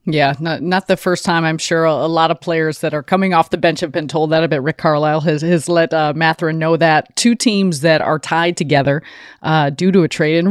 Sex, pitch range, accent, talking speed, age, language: female, 140-165 Hz, American, 255 wpm, 30-49, English